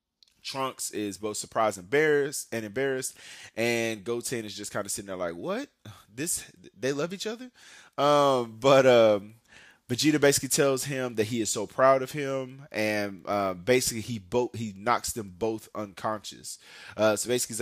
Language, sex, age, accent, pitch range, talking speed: English, male, 20-39, American, 105-130 Hz, 170 wpm